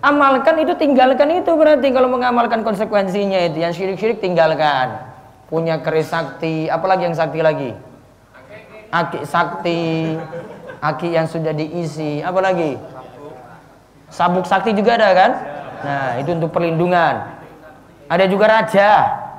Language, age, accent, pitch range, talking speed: Indonesian, 30-49, native, 155-220 Hz, 120 wpm